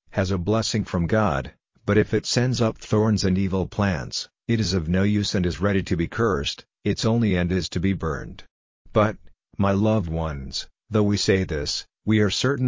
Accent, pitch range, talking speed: American, 90-105 Hz, 205 wpm